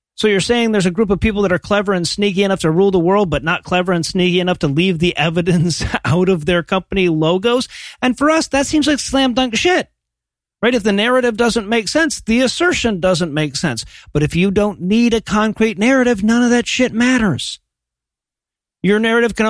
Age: 40-59